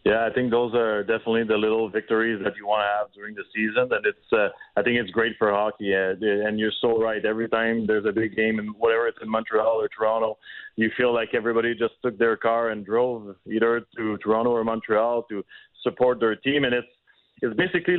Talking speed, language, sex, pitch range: 220 wpm, English, male, 110-125 Hz